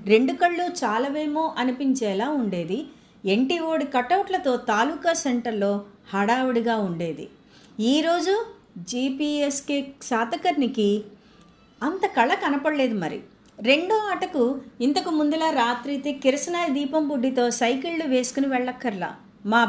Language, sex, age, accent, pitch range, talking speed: Telugu, female, 30-49, native, 215-305 Hz, 90 wpm